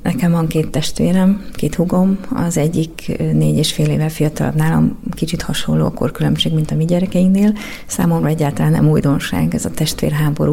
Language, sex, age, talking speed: Hungarian, female, 30-49, 165 wpm